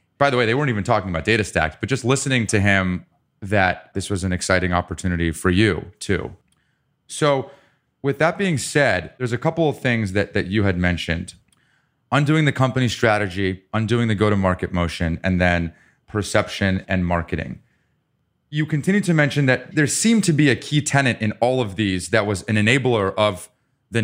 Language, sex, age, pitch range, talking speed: English, male, 30-49, 100-140 Hz, 185 wpm